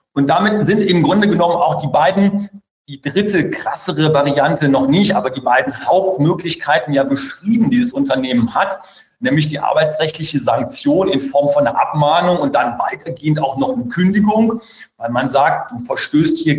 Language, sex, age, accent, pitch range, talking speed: German, male, 40-59, German, 140-190 Hz, 170 wpm